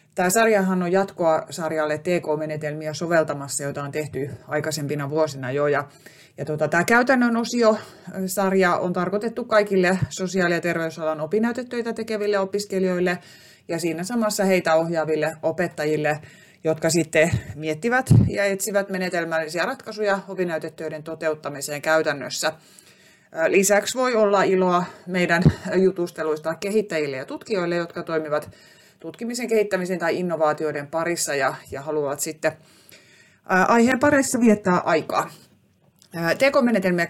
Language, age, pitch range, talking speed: Finnish, 30-49, 155-205 Hz, 115 wpm